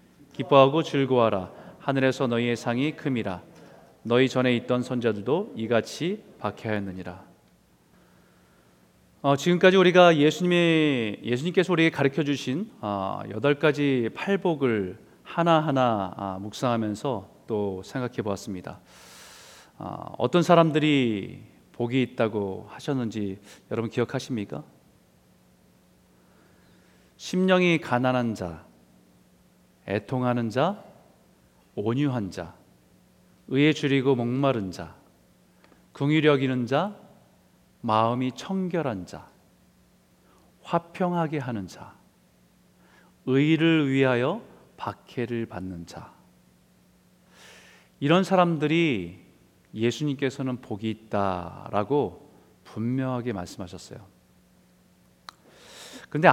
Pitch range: 95-145 Hz